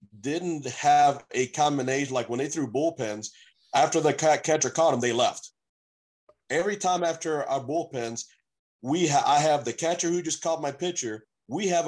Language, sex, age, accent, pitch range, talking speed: English, male, 40-59, American, 120-150 Hz, 170 wpm